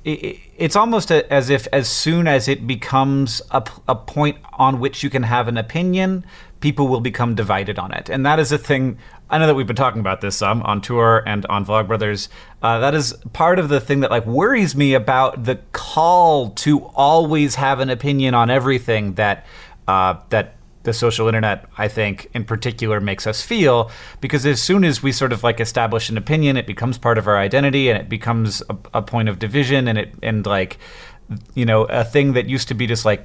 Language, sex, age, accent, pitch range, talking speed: English, male, 30-49, American, 105-135 Hz, 210 wpm